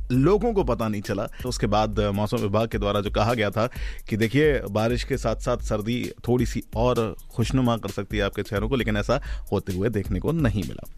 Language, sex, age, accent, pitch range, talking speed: Hindi, male, 30-49, native, 110-140 Hz, 220 wpm